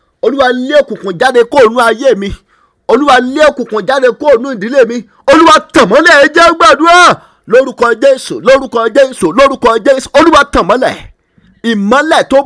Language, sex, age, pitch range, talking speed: English, male, 50-69, 235-285 Hz, 150 wpm